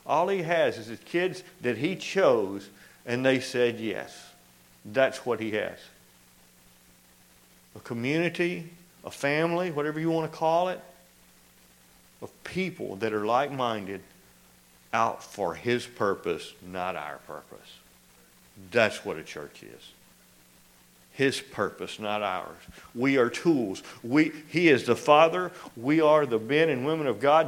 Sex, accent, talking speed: male, American, 140 wpm